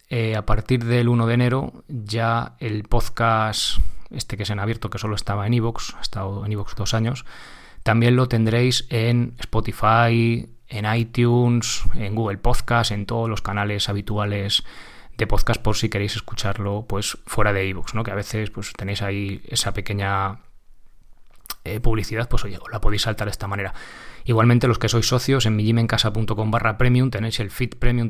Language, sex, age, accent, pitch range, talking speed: Spanish, male, 20-39, Spanish, 105-120 Hz, 180 wpm